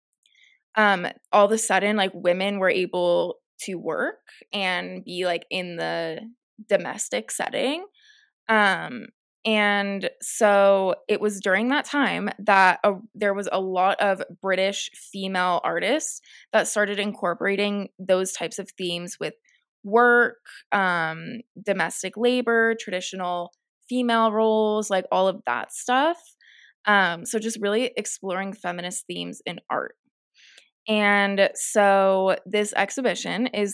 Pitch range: 190-230 Hz